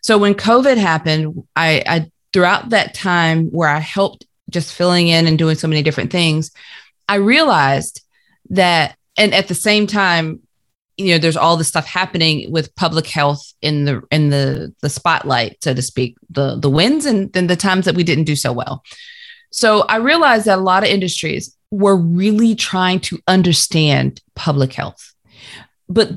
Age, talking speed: 30-49, 175 wpm